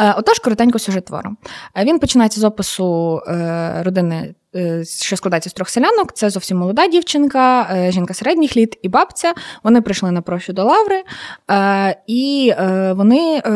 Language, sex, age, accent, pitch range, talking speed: Ukrainian, female, 20-39, native, 180-245 Hz, 135 wpm